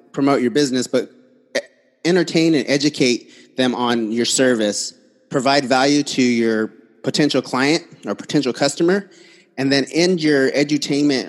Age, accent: 30-49, American